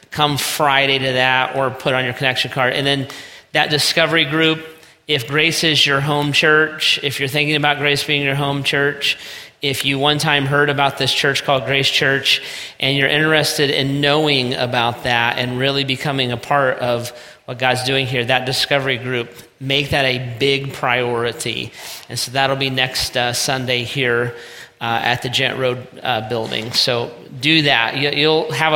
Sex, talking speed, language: male, 180 wpm, English